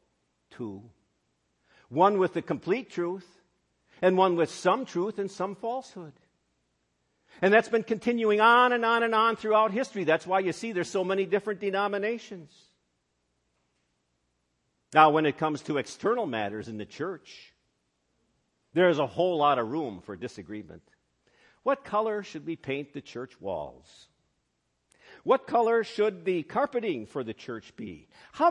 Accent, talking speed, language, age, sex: American, 150 wpm, English, 50-69, male